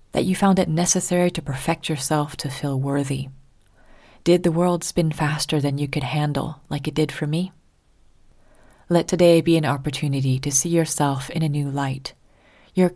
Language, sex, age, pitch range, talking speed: English, female, 30-49, 135-160 Hz, 175 wpm